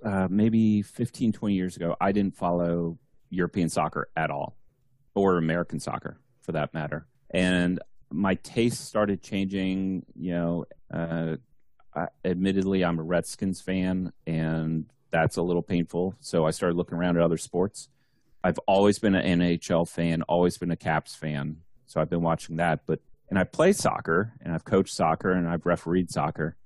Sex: male